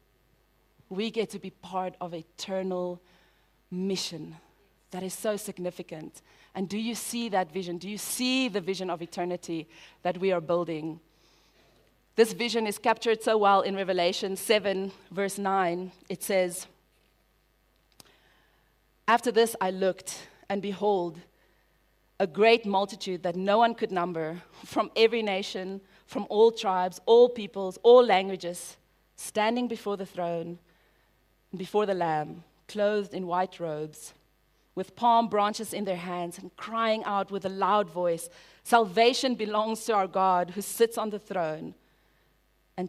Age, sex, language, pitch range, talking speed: 30-49, female, English, 175-210 Hz, 140 wpm